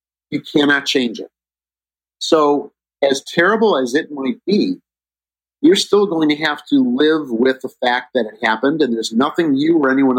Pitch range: 110-140 Hz